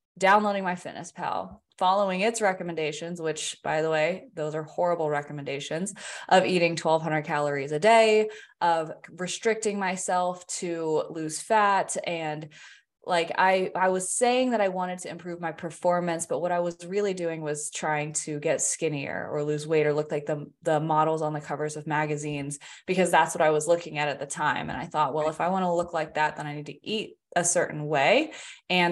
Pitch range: 155-190 Hz